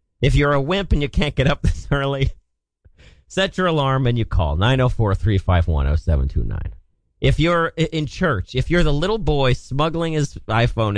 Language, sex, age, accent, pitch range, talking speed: English, male, 40-59, American, 90-150 Hz, 170 wpm